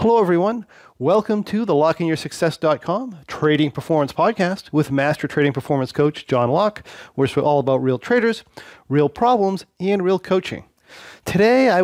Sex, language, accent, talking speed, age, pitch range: male, English, American, 145 wpm, 40-59, 125-170 Hz